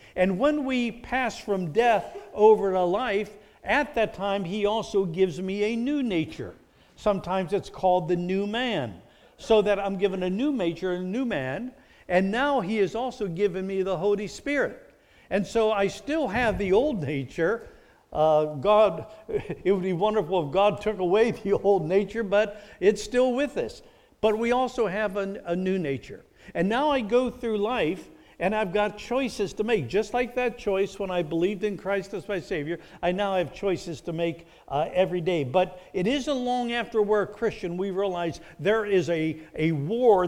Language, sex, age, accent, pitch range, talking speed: English, male, 60-79, American, 180-225 Hz, 190 wpm